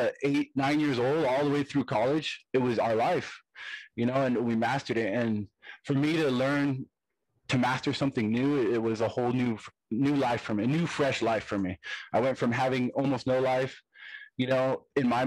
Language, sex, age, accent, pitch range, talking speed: English, male, 20-39, American, 115-140 Hz, 210 wpm